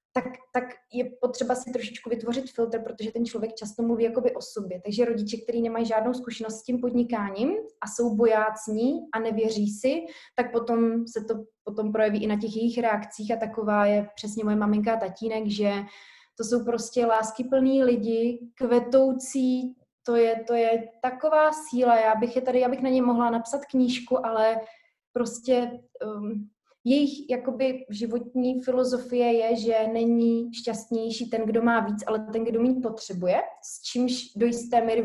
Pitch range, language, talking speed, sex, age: 215-245 Hz, Slovak, 170 wpm, female, 20-39